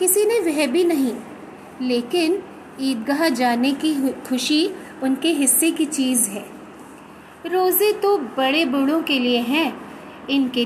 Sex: female